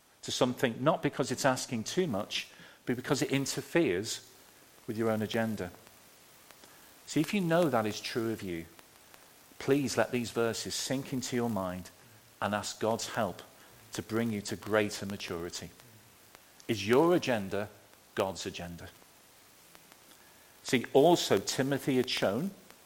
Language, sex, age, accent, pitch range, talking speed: English, male, 40-59, British, 105-145 Hz, 140 wpm